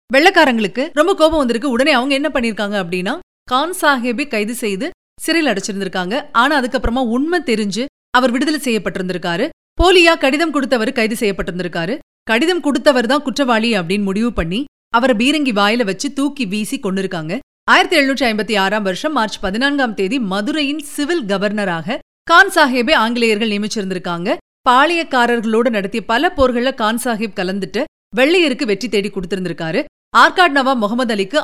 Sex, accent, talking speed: female, native, 130 wpm